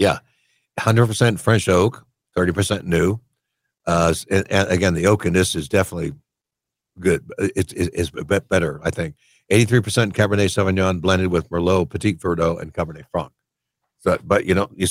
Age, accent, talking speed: 60-79, American, 165 wpm